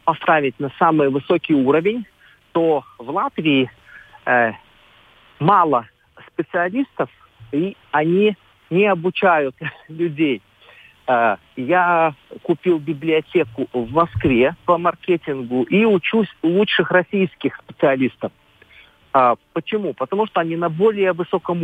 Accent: native